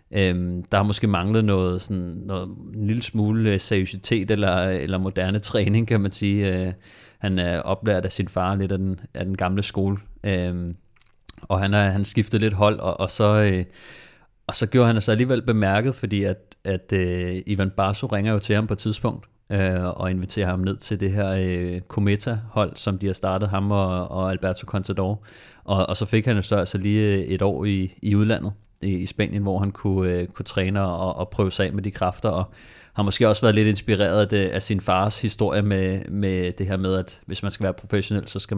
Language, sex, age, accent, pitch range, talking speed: Danish, male, 30-49, native, 95-105 Hz, 220 wpm